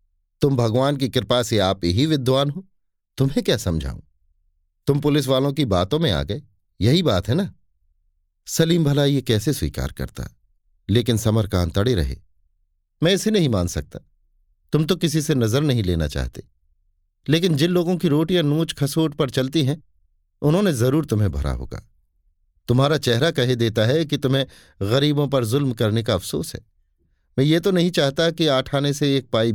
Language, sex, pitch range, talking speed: Hindi, male, 90-150 Hz, 180 wpm